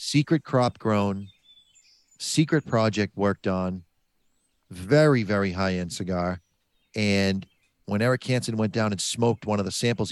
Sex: male